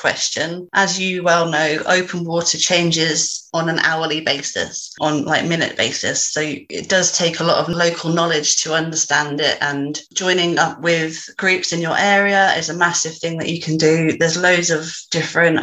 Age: 30-49